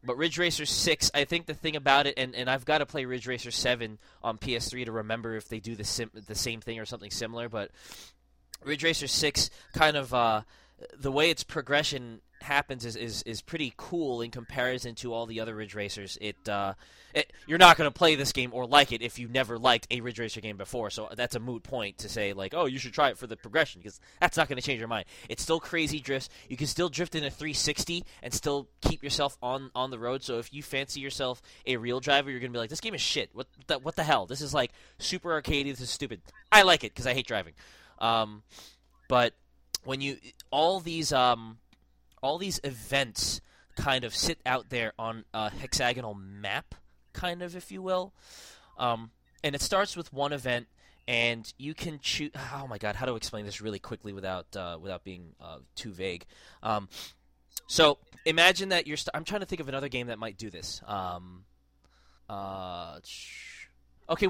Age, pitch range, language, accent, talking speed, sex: 20-39, 110-150 Hz, English, American, 215 wpm, male